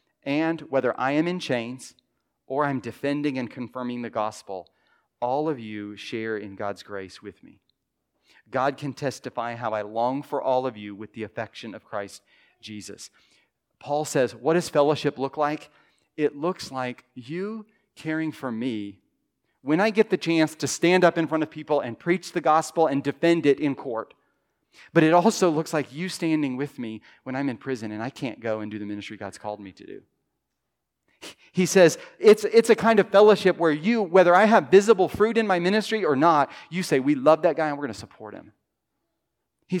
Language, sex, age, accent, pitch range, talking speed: English, male, 40-59, American, 130-180 Hz, 195 wpm